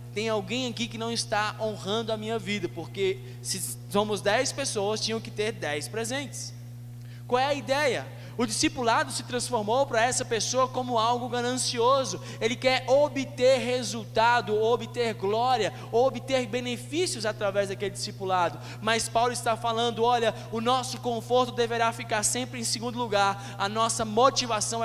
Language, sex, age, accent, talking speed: Portuguese, male, 20-39, Brazilian, 150 wpm